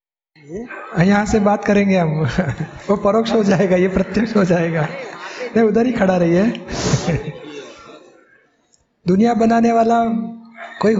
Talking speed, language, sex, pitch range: 125 wpm, Hindi, male, 200-225 Hz